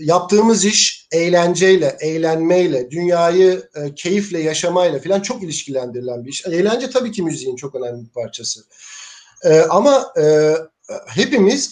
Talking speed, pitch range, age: 130 wpm, 165-210 Hz, 50-69